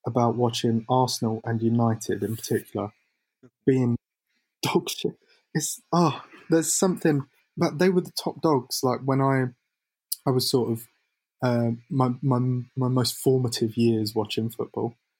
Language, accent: English, British